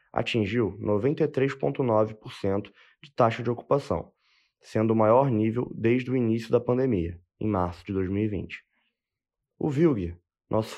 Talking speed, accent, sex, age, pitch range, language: 120 wpm, Brazilian, male, 20-39, 105-130 Hz, Portuguese